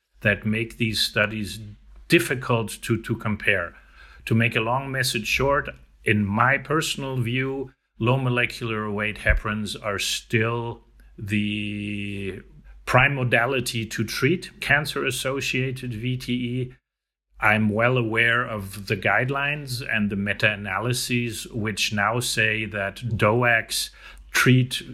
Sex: male